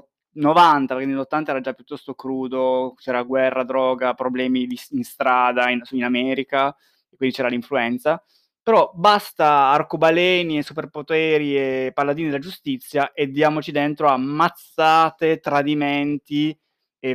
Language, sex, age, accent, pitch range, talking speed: Italian, male, 20-39, native, 135-180 Hz, 130 wpm